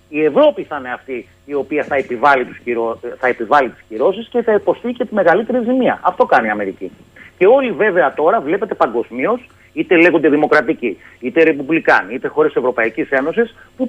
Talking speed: 175 wpm